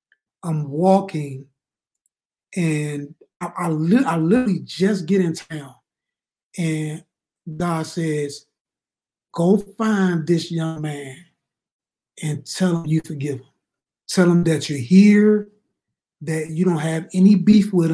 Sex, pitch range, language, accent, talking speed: male, 160-195 Hz, English, American, 120 wpm